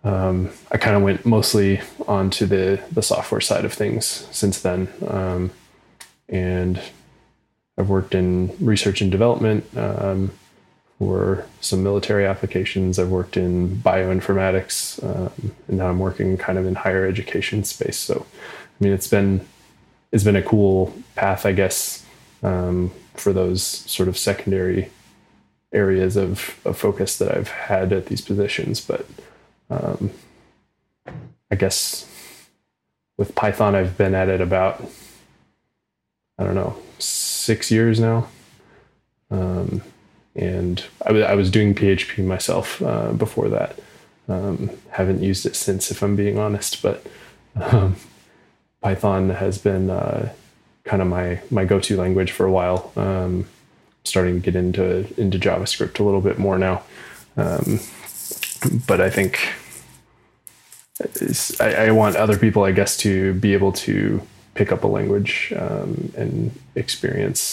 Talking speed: 140 wpm